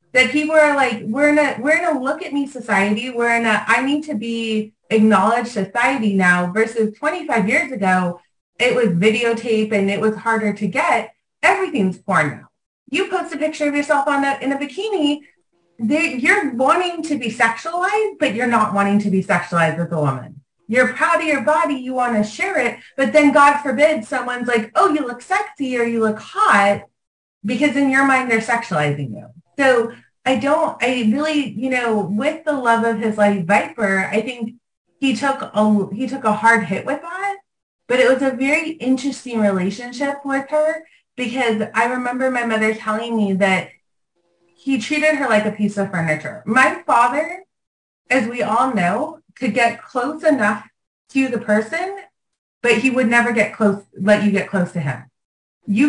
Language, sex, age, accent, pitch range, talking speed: English, female, 30-49, American, 210-285 Hz, 190 wpm